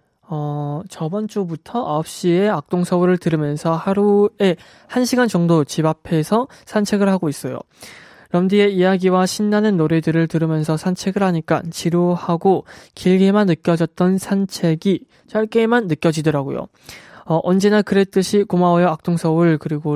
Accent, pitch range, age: native, 155-195 Hz, 20-39